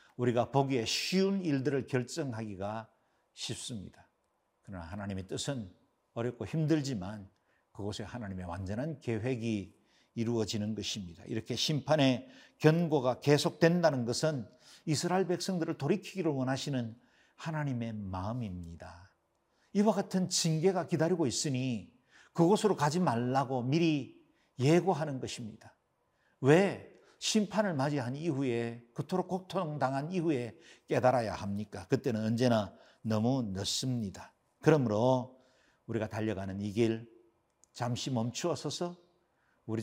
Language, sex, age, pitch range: Korean, male, 50-69, 110-155 Hz